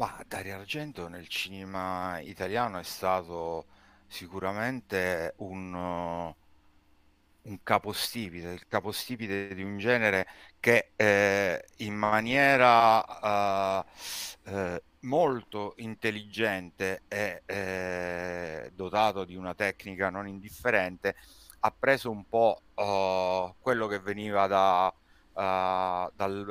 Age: 50-69